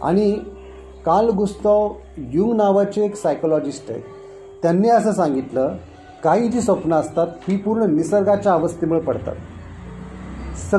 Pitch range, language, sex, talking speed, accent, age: 145-205 Hz, English, male, 105 wpm, Indian, 30-49